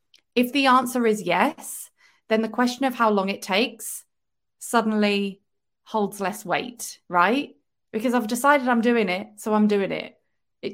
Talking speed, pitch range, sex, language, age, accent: 160 wpm, 200-250 Hz, female, English, 30-49, British